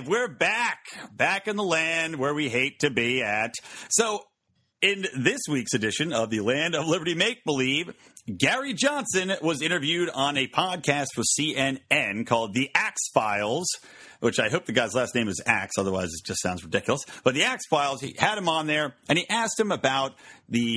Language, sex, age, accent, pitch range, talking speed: English, male, 40-59, American, 125-190 Hz, 190 wpm